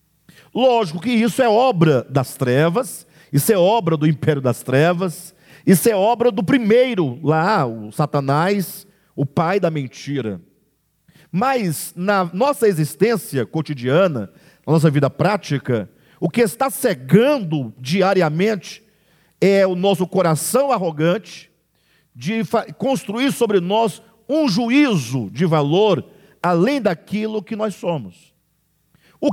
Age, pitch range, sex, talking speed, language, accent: 50-69, 145-210 Hz, male, 120 wpm, Portuguese, Brazilian